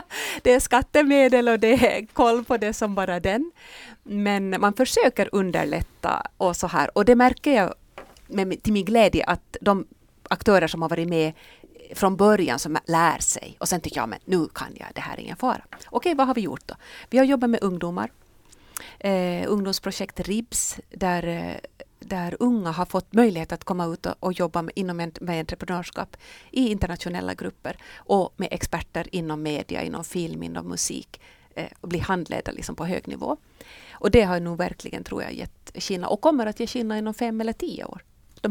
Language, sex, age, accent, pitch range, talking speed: Swedish, female, 30-49, native, 180-225 Hz, 190 wpm